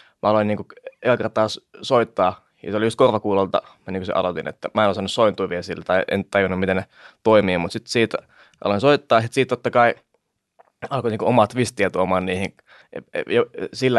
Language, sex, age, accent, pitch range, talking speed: Finnish, male, 20-39, native, 100-120 Hz, 195 wpm